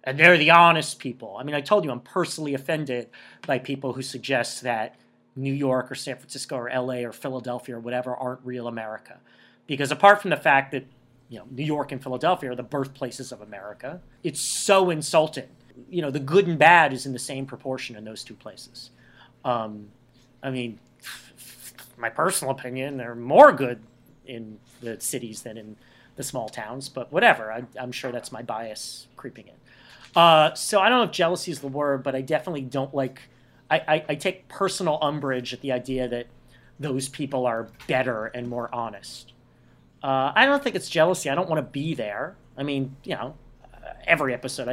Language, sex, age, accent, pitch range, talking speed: English, male, 40-59, American, 125-150 Hz, 190 wpm